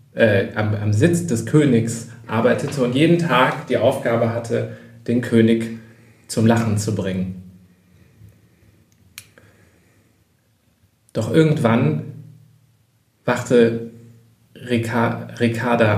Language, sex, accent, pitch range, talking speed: German, male, German, 105-120 Hz, 85 wpm